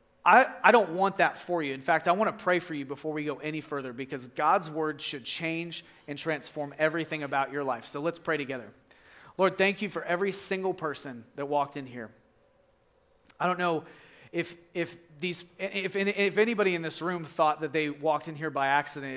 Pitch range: 150-185 Hz